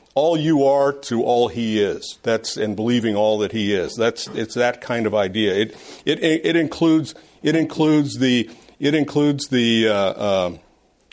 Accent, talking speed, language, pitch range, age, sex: American, 165 wpm, English, 110-140 Hz, 50-69, male